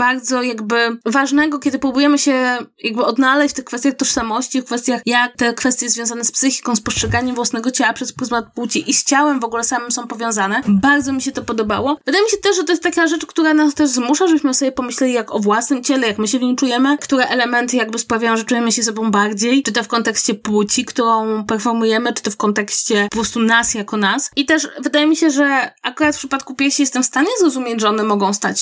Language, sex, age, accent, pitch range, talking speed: Polish, female, 20-39, native, 220-275 Hz, 230 wpm